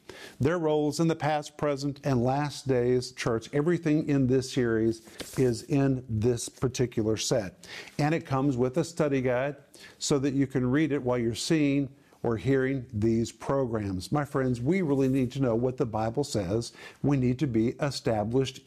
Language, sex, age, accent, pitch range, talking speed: English, male, 50-69, American, 125-150 Hz, 175 wpm